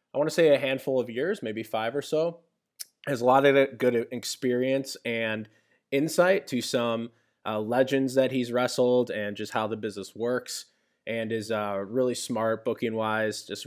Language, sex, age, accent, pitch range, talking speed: English, male, 20-39, American, 110-130 Hz, 185 wpm